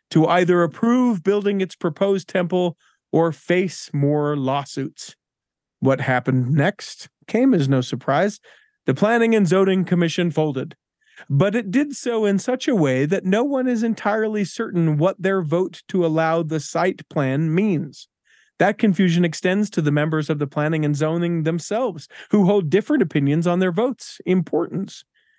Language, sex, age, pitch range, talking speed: English, male, 40-59, 150-205 Hz, 160 wpm